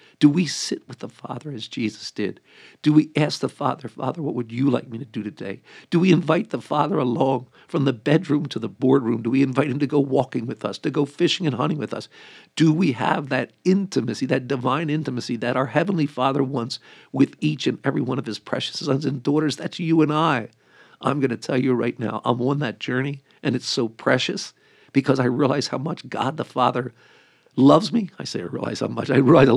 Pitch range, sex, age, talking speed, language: 120-150 Hz, male, 50-69, 230 wpm, English